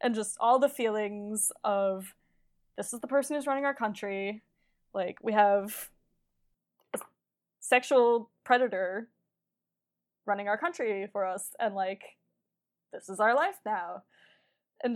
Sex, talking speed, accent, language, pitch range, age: female, 130 wpm, American, English, 200-240 Hz, 10-29